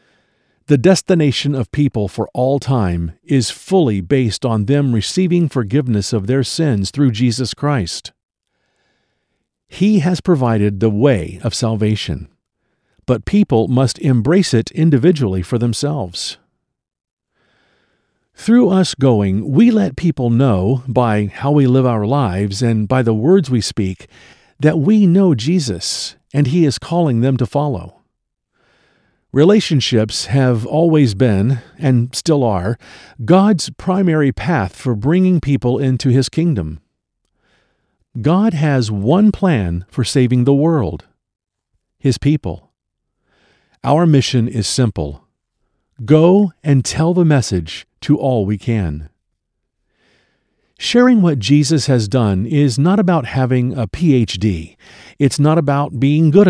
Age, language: 50-69, English